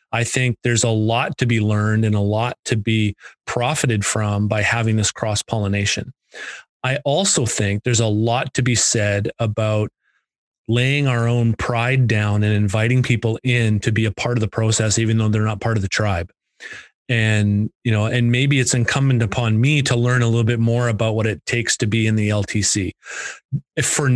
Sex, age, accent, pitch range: male, 30-49, American, 110-125 Hz